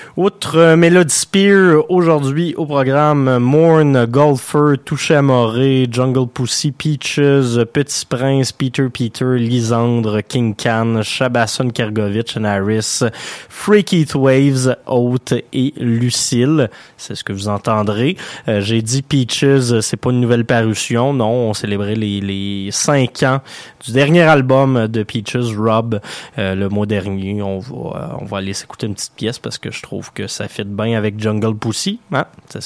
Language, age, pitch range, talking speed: French, 20-39, 115-150 Hz, 155 wpm